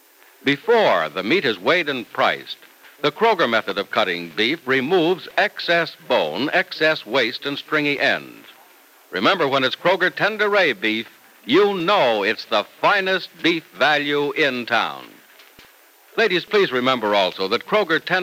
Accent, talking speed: American, 140 wpm